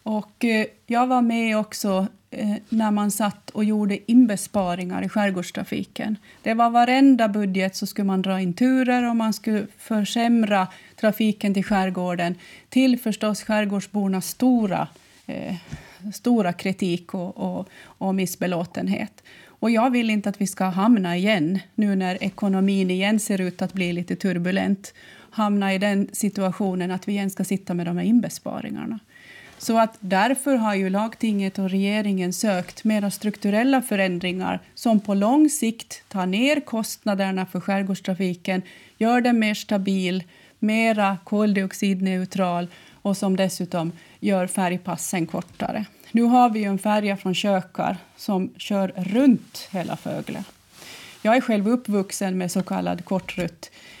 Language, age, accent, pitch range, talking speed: Swedish, 30-49, native, 190-220 Hz, 135 wpm